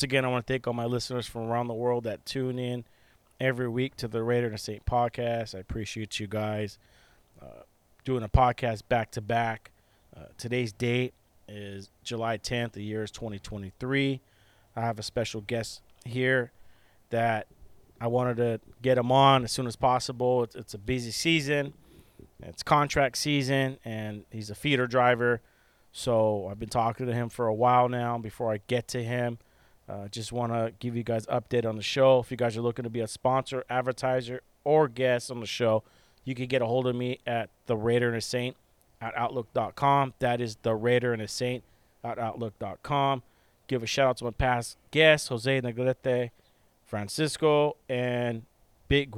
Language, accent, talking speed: English, American, 185 wpm